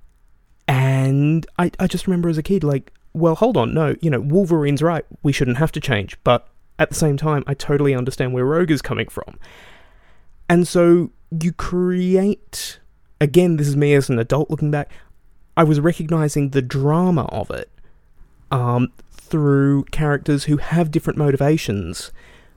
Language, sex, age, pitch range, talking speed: English, male, 20-39, 120-160 Hz, 165 wpm